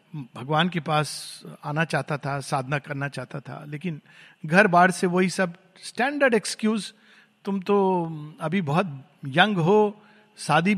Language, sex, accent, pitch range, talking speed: Hindi, male, native, 170-220 Hz, 140 wpm